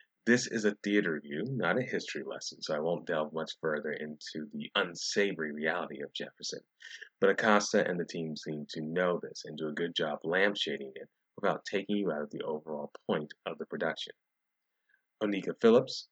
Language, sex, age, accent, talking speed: English, male, 30-49, American, 185 wpm